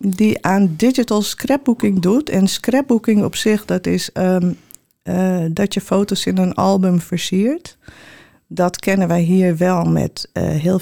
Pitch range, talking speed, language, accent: 180-210 Hz, 155 wpm, Dutch, Dutch